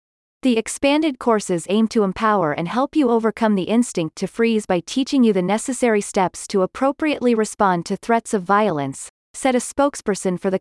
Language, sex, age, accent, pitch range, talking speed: English, female, 30-49, American, 180-245 Hz, 180 wpm